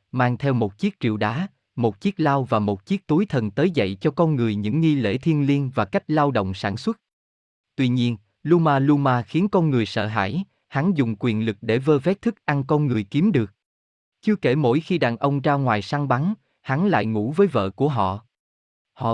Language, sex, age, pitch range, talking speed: Vietnamese, male, 20-39, 115-155 Hz, 220 wpm